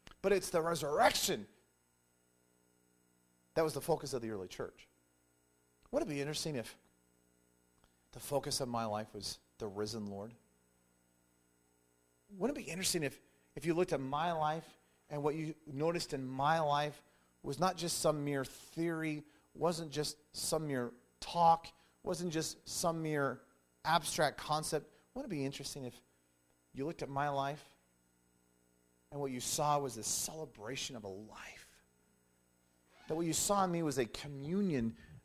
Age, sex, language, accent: 40-59, male, English, American